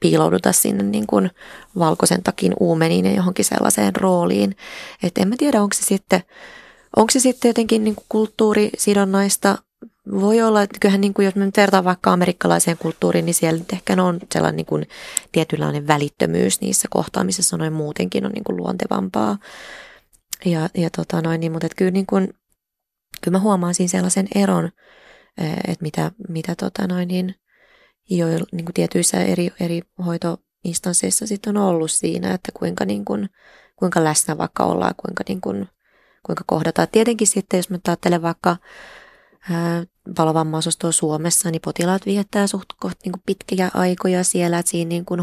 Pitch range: 160-195 Hz